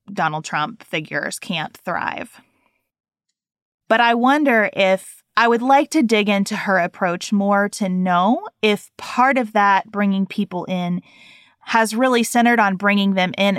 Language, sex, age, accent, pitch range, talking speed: English, female, 30-49, American, 185-240 Hz, 150 wpm